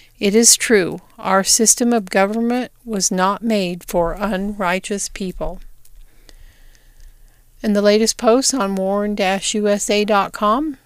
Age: 50-69